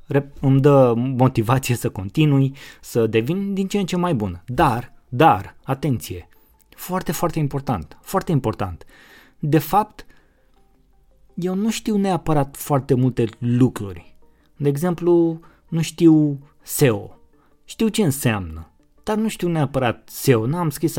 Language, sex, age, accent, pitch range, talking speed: Romanian, male, 20-39, native, 120-155 Hz, 130 wpm